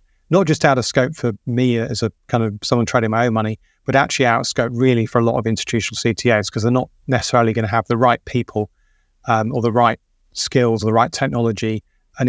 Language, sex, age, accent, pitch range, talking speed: English, male, 30-49, British, 110-130 Hz, 235 wpm